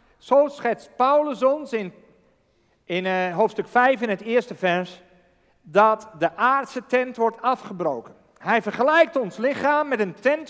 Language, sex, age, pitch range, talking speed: Dutch, male, 50-69, 165-240 Hz, 145 wpm